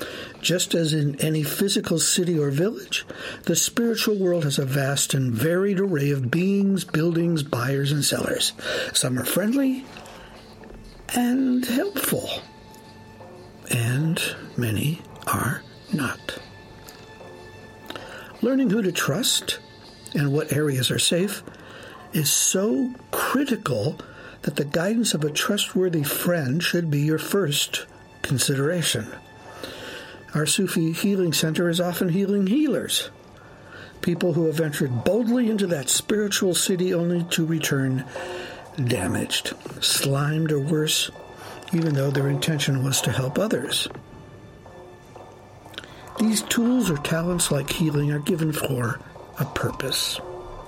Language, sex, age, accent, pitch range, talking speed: English, male, 60-79, American, 140-195 Hz, 115 wpm